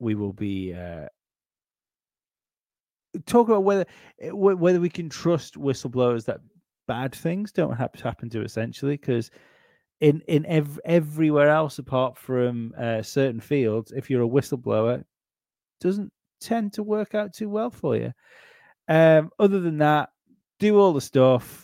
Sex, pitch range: male, 115-150 Hz